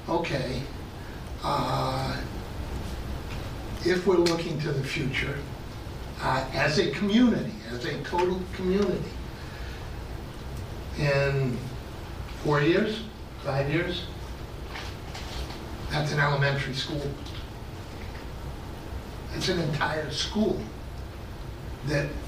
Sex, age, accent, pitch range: male, 60-79, American, 130-160 Hz